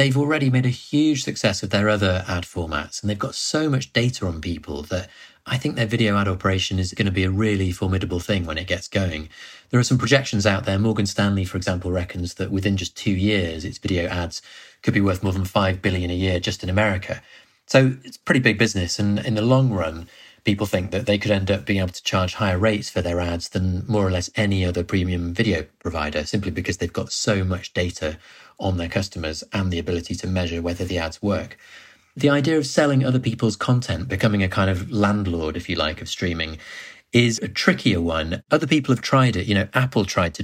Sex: male